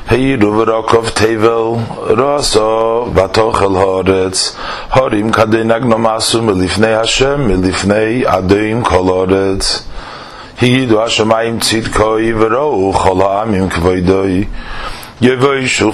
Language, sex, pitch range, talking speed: English, male, 95-135 Hz, 95 wpm